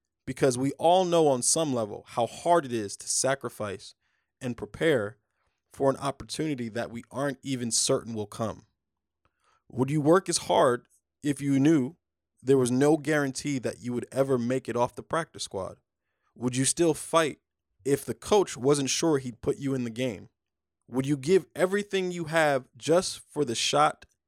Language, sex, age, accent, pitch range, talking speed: English, male, 20-39, American, 110-145 Hz, 180 wpm